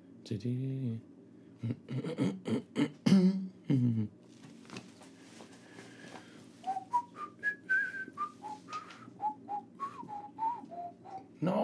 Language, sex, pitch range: Danish, male, 125-205 Hz